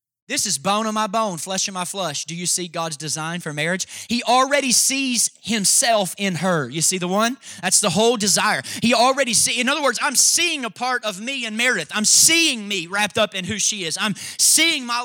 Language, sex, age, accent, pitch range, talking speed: English, male, 30-49, American, 150-215 Hz, 225 wpm